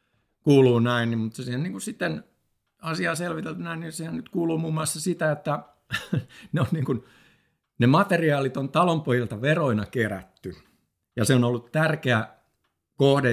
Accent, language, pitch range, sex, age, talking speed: native, Finnish, 110-155 Hz, male, 60-79, 160 wpm